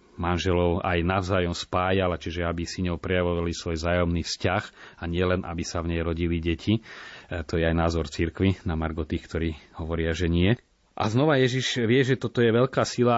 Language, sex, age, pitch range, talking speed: Slovak, male, 30-49, 90-100 Hz, 180 wpm